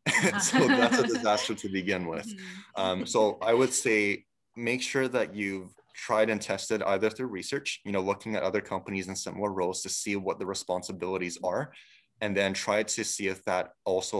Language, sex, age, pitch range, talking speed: English, male, 20-39, 95-110 Hz, 190 wpm